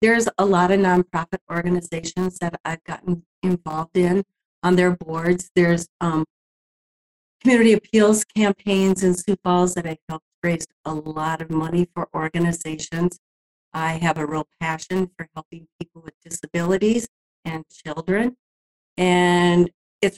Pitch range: 165-190 Hz